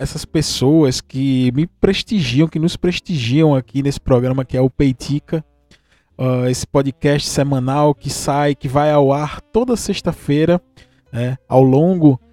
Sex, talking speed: male, 135 wpm